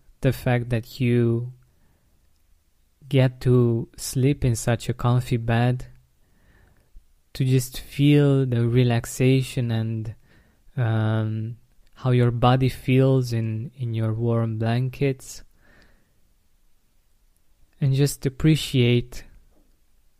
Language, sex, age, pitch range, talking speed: English, male, 20-39, 110-125 Hz, 90 wpm